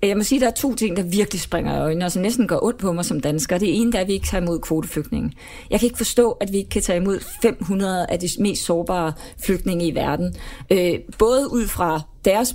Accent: native